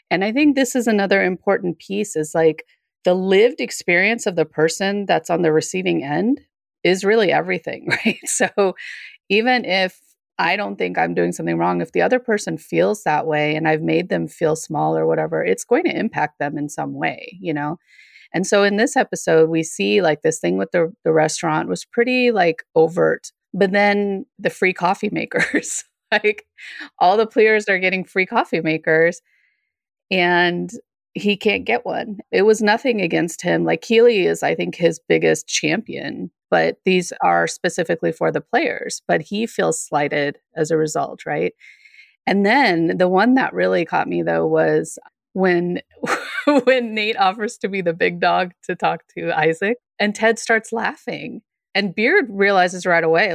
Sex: female